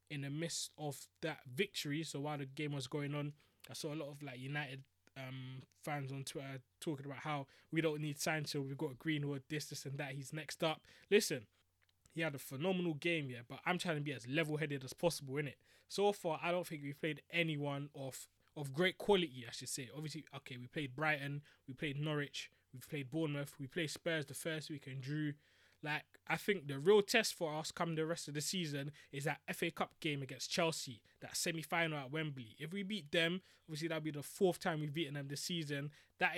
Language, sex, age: English, male, 20-39